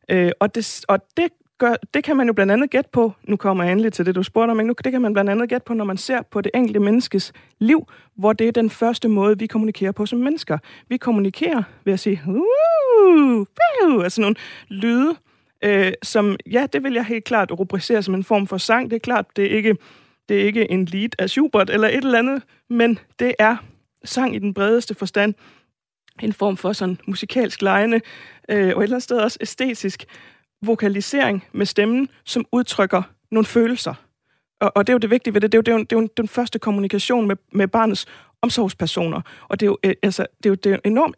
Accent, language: native, Danish